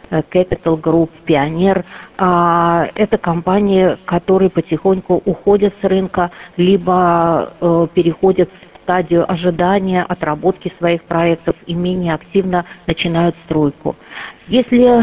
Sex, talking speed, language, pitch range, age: female, 100 wpm, Russian, 165-190 Hz, 40-59